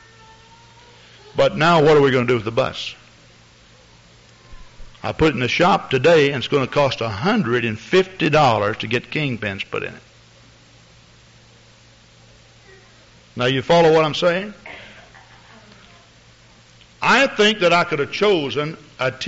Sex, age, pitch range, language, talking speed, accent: male, 60-79, 125-170 Hz, English, 135 wpm, American